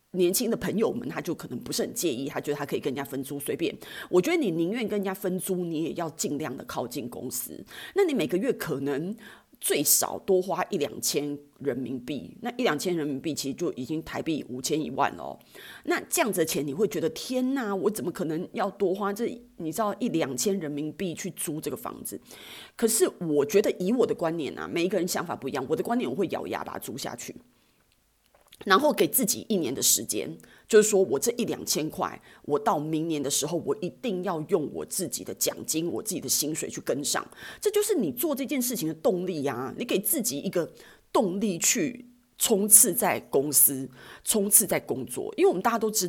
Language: Chinese